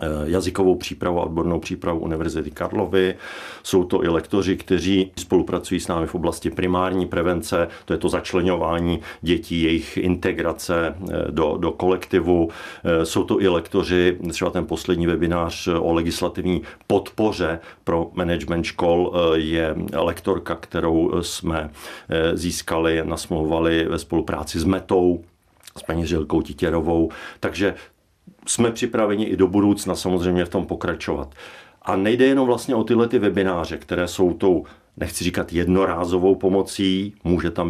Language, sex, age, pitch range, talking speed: Czech, male, 50-69, 85-90 Hz, 135 wpm